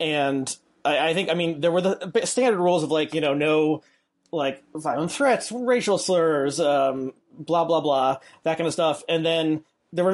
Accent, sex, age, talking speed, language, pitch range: American, male, 30-49, 195 wpm, English, 140-180 Hz